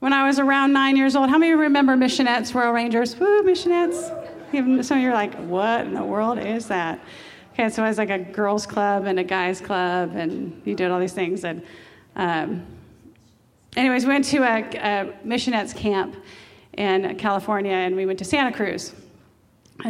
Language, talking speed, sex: English, 195 wpm, female